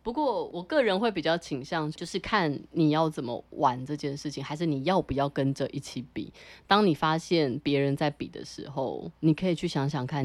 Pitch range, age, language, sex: 145-185 Hz, 20-39, Chinese, female